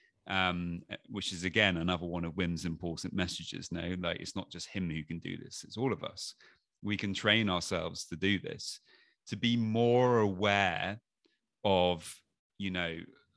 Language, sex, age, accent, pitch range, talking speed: English, male, 30-49, British, 90-120 Hz, 170 wpm